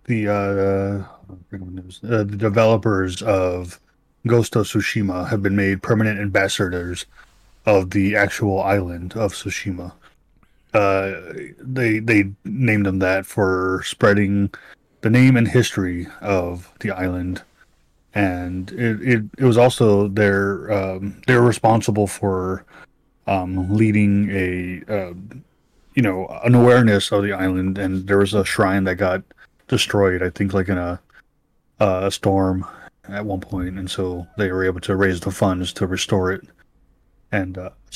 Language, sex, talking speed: English, male, 140 wpm